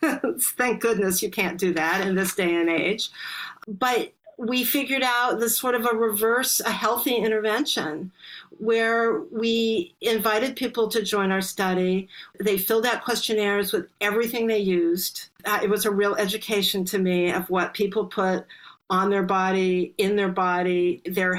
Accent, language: American, English